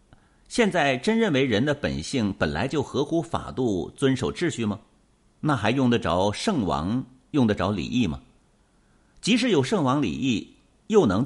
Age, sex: 50-69, male